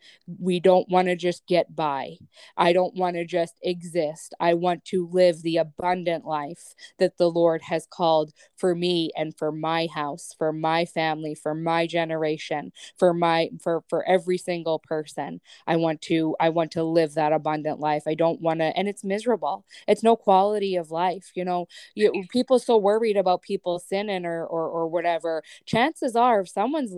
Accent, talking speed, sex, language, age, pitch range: American, 180 wpm, female, English, 20-39, 170-230 Hz